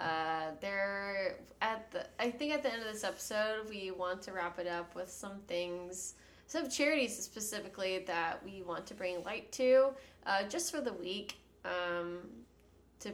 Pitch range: 180-205 Hz